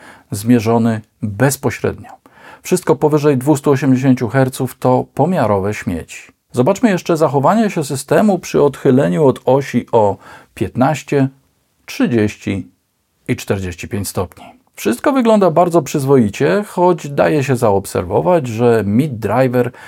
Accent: native